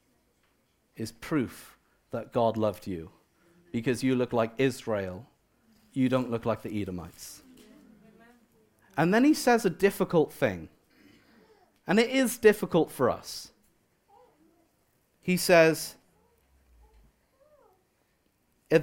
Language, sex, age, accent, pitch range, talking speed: English, male, 40-59, British, 135-205 Hz, 105 wpm